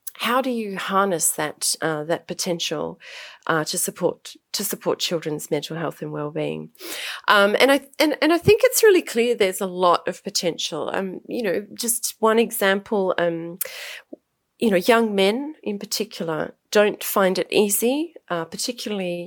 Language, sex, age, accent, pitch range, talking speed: English, female, 30-49, Australian, 170-245 Hz, 165 wpm